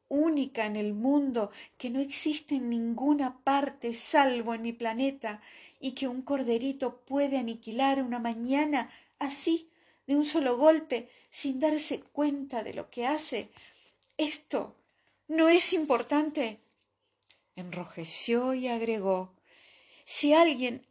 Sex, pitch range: female, 245-300 Hz